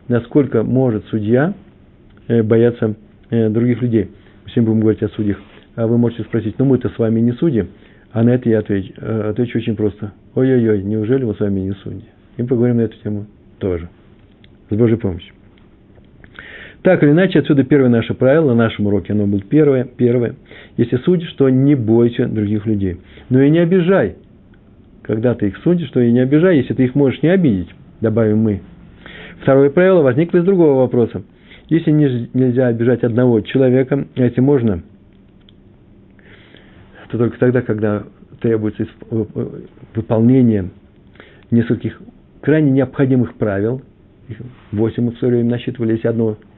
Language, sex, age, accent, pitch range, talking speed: Russian, male, 50-69, native, 105-130 Hz, 155 wpm